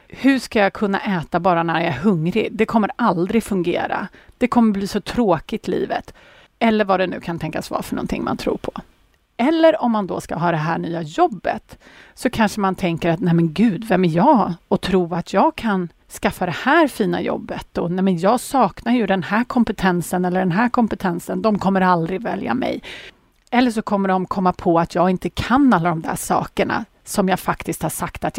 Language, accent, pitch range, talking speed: Swedish, native, 175-240 Hz, 215 wpm